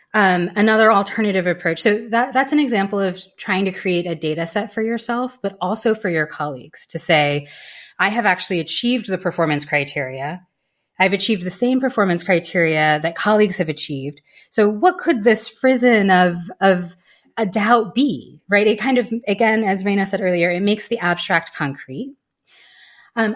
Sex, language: female, English